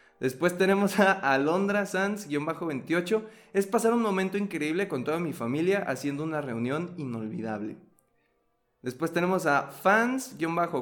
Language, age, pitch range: Spanish, 20-39, 125-190 Hz